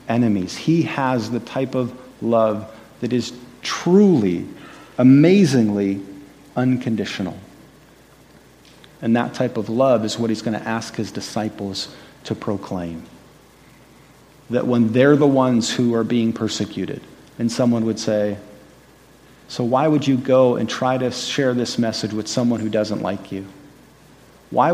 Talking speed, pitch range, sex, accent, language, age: 140 wpm, 110-135 Hz, male, American, English, 40-59